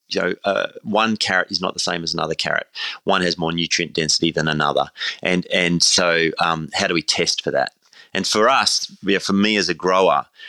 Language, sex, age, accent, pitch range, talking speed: English, male, 30-49, Australian, 80-105 Hz, 220 wpm